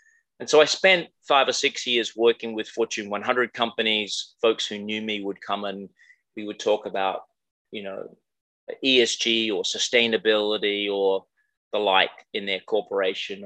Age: 30-49